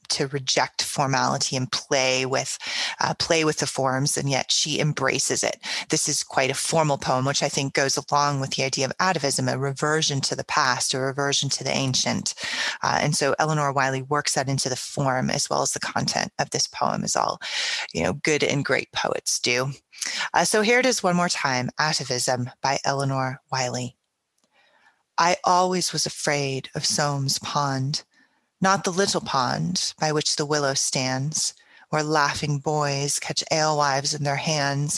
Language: English